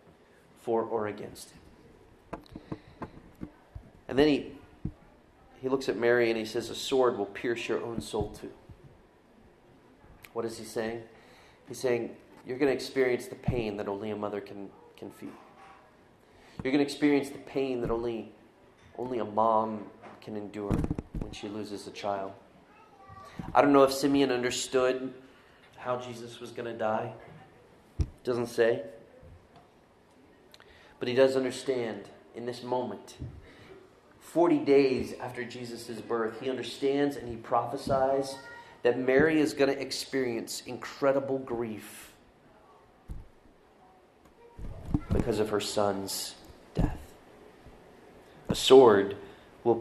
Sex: male